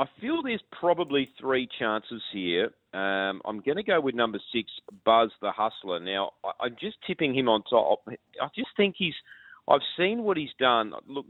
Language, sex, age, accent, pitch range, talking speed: English, male, 40-59, Australian, 105-135 Hz, 190 wpm